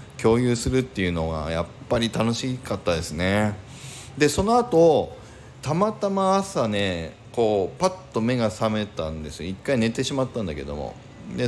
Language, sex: Japanese, male